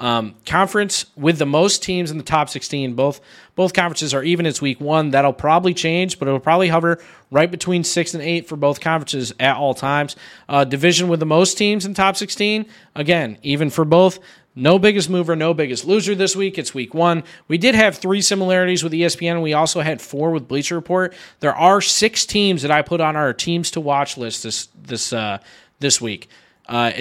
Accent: American